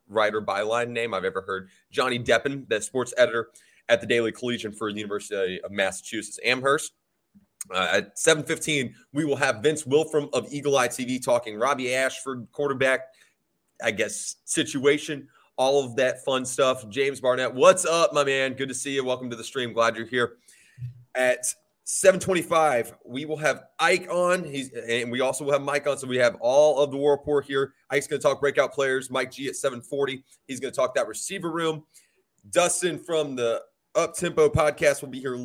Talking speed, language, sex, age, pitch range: 190 wpm, English, male, 30-49, 125-160 Hz